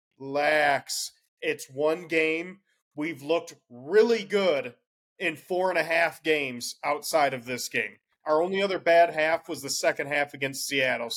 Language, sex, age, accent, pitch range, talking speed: English, male, 30-49, American, 150-200 Hz, 155 wpm